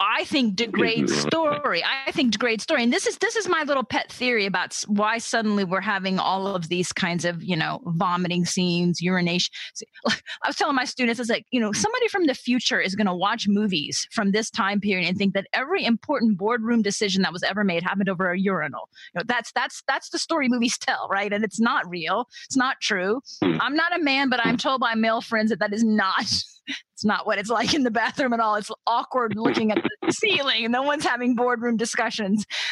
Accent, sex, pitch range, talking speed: American, female, 200-260 Hz, 225 wpm